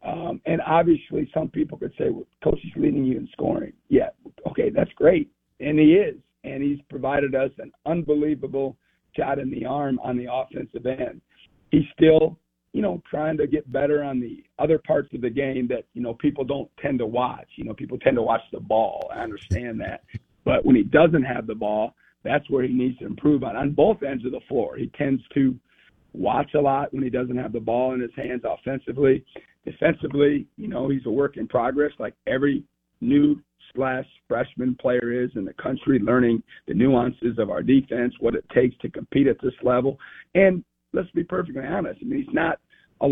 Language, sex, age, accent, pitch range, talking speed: English, male, 50-69, American, 125-150 Hz, 205 wpm